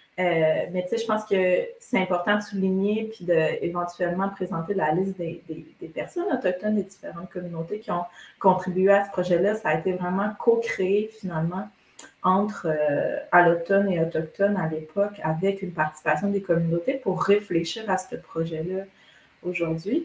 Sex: female